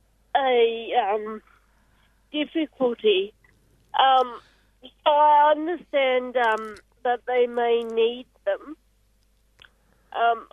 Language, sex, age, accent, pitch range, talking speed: English, female, 40-59, British, 225-300 Hz, 80 wpm